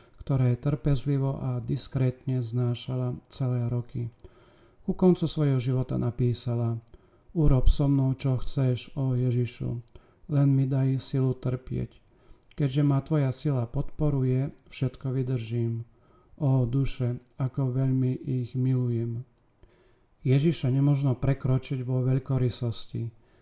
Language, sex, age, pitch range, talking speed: Slovak, male, 40-59, 120-140 Hz, 110 wpm